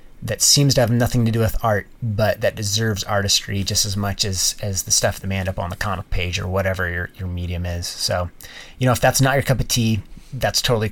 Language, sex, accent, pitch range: English, male, American, 100-120 Hz